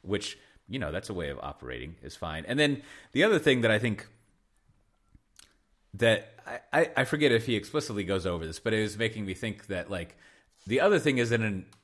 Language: English